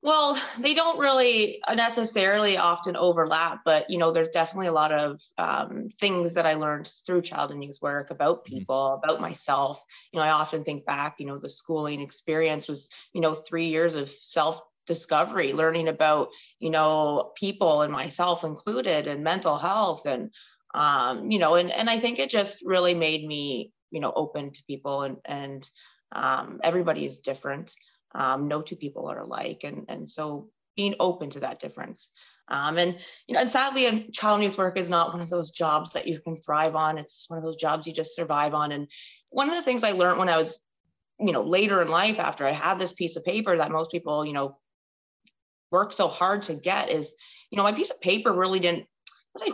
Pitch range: 150-190 Hz